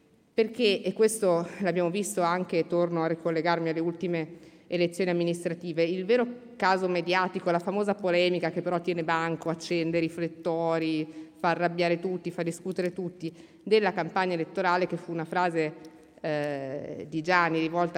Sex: female